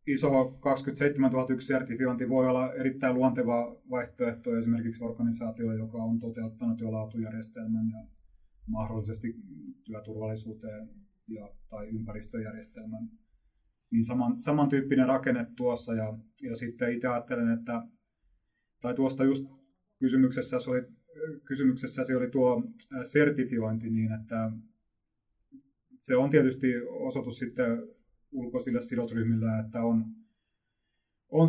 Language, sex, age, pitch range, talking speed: Finnish, male, 30-49, 115-135 Hz, 100 wpm